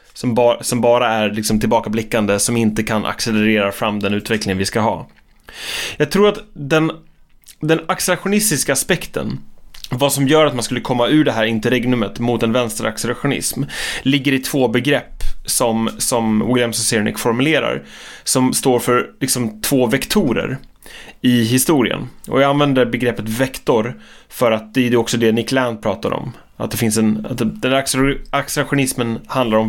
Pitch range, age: 115-145 Hz, 20-39